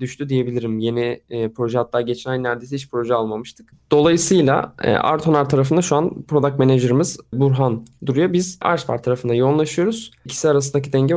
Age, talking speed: 20-39, 160 wpm